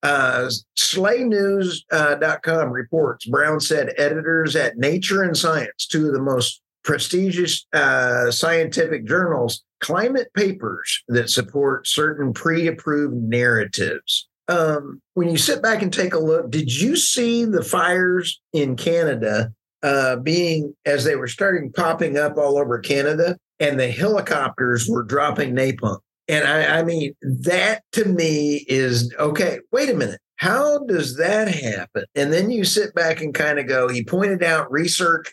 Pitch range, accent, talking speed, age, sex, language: 135-180 Hz, American, 150 wpm, 50-69, male, English